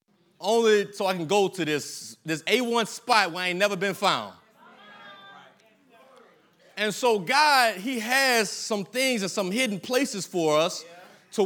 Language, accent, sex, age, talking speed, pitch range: English, American, male, 30-49, 155 wpm, 185-255 Hz